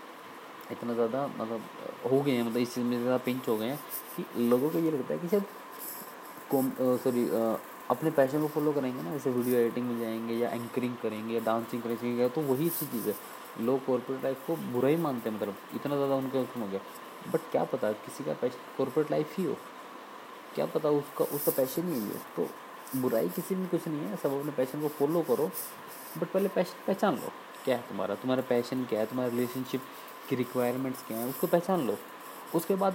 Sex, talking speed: male, 210 wpm